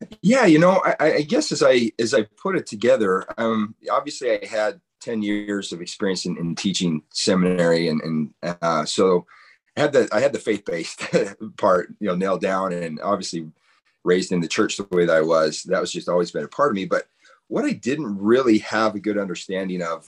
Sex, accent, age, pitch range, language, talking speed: male, American, 40-59, 90-110 Hz, English, 215 wpm